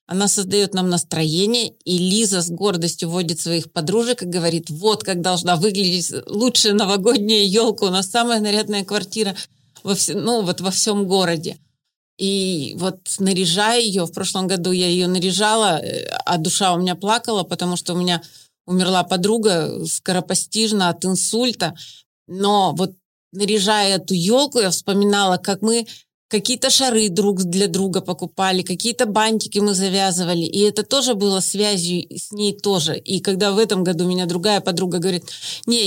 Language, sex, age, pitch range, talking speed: Russian, female, 30-49, 180-215 Hz, 155 wpm